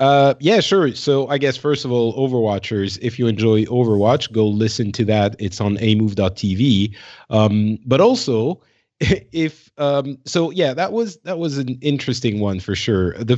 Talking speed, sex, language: 165 wpm, male, English